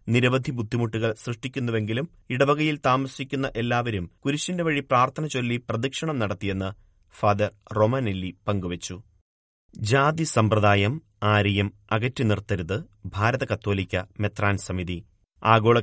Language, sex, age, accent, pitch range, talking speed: Malayalam, male, 30-49, native, 105-125 Hz, 95 wpm